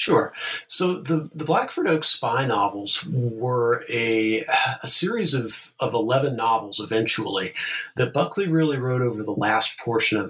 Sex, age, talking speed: male, 40-59, 150 wpm